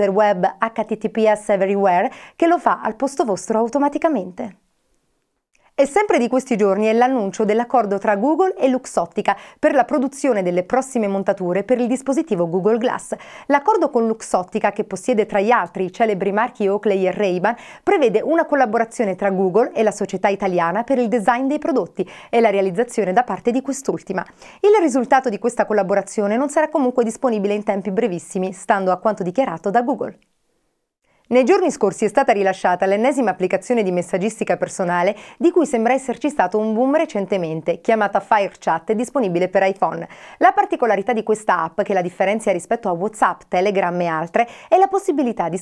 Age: 30-49